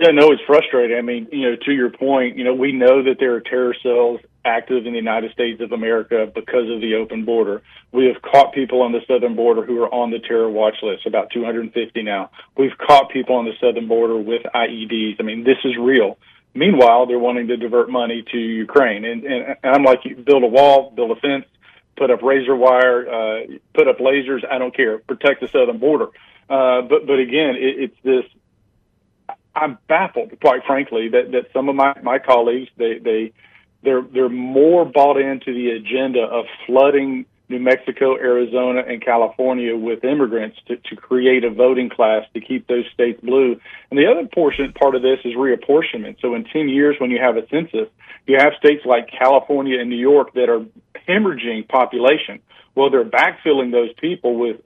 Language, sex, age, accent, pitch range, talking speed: English, male, 40-59, American, 120-135 Hz, 195 wpm